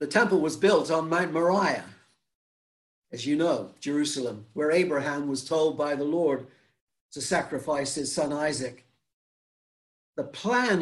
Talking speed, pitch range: 140 wpm, 135-180 Hz